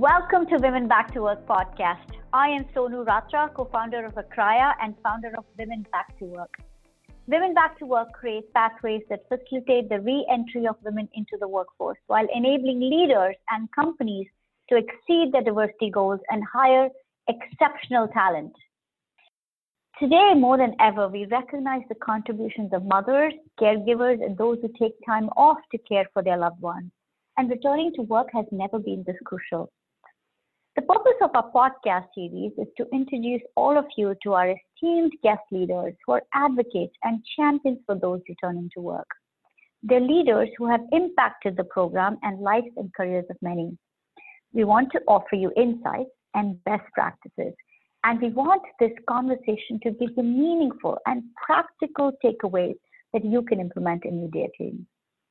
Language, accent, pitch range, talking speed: English, Indian, 205-265 Hz, 160 wpm